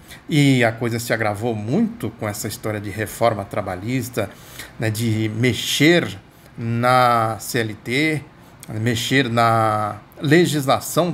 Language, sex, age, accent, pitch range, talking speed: Portuguese, male, 50-69, Brazilian, 110-130 Hz, 110 wpm